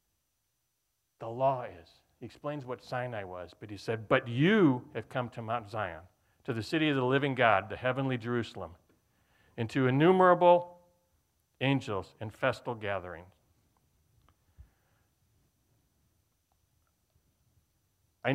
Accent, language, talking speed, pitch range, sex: American, English, 110 wpm, 110-140 Hz, male